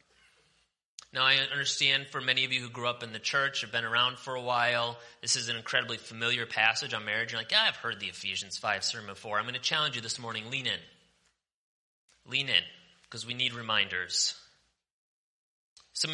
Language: English